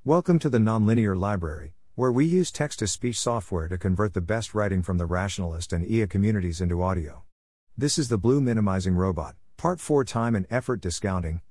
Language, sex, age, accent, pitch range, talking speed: English, male, 50-69, American, 90-115 Hz, 180 wpm